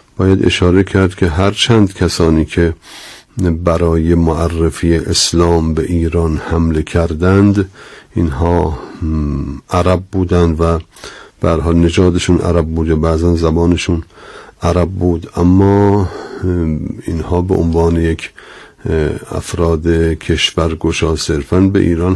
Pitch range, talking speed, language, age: 85-95 Hz, 105 wpm, Persian, 50-69